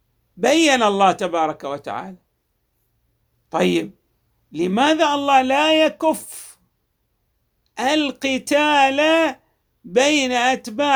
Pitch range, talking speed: 190-280 Hz, 65 wpm